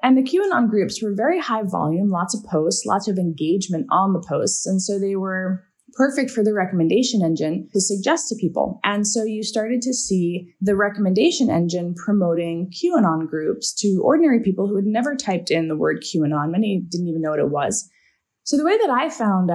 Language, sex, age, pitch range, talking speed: English, female, 20-39, 170-235 Hz, 205 wpm